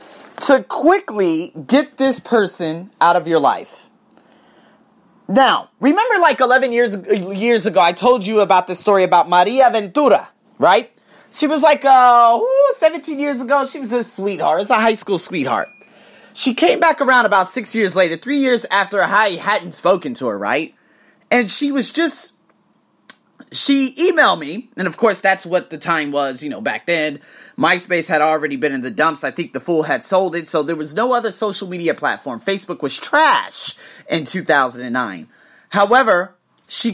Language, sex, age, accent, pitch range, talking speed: English, male, 30-49, American, 175-255 Hz, 175 wpm